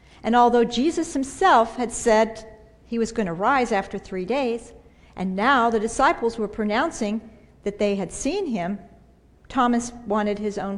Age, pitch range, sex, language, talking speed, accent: 50-69, 205-260 Hz, female, English, 155 wpm, American